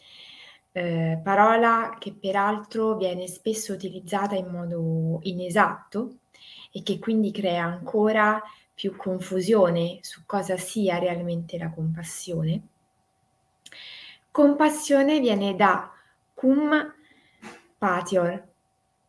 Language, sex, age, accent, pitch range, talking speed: Italian, female, 20-39, native, 185-245 Hz, 90 wpm